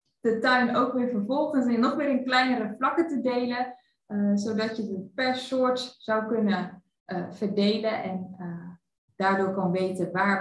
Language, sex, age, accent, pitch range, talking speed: Dutch, female, 20-39, Dutch, 185-245 Hz, 160 wpm